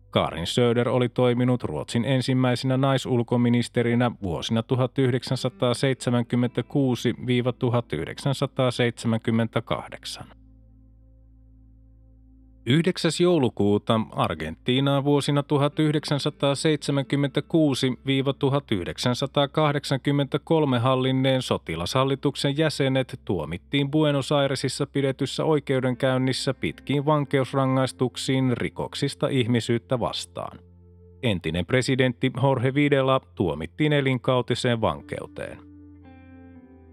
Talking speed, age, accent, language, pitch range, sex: 55 wpm, 30-49, native, Finnish, 115-140 Hz, male